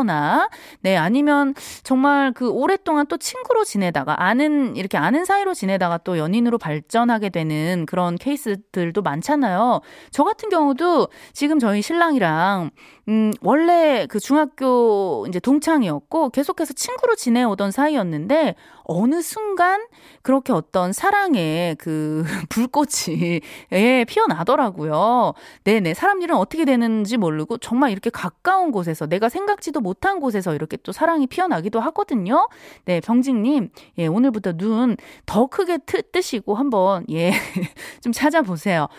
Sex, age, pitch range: female, 30-49, 200-300 Hz